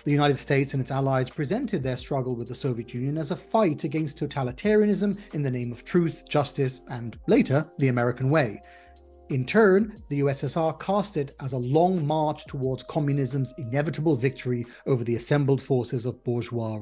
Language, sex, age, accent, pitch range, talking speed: English, male, 40-59, British, 125-170 Hz, 175 wpm